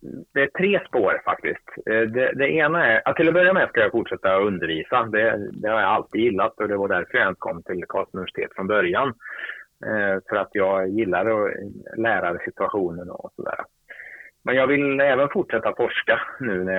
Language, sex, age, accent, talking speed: Swedish, male, 30-49, Norwegian, 185 wpm